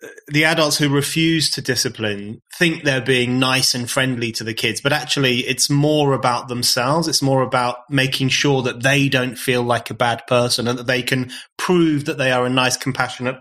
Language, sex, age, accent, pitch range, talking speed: English, male, 30-49, British, 125-155 Hz, 200 wpm